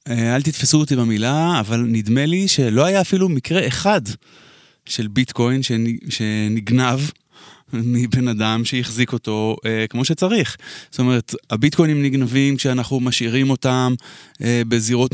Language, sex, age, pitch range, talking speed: Hebrew, male, 20-39, 115-140 Hz, 115 wpm